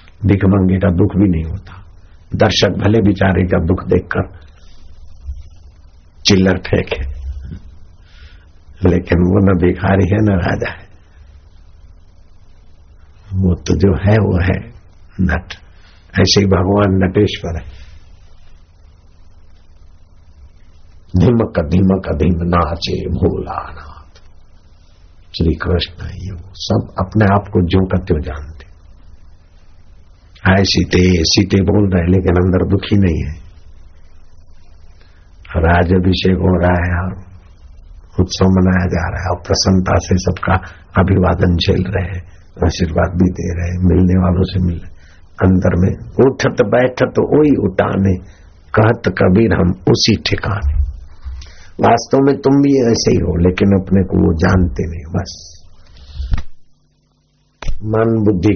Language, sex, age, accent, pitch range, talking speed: Hindi, male, 60-79, native, 80-95 Hz, 115 wpm